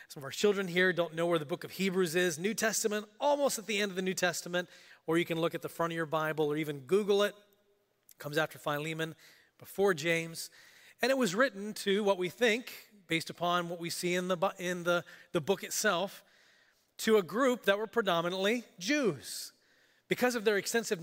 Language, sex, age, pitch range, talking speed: English, male, 30-49, 165-220 Hz, 210 wpm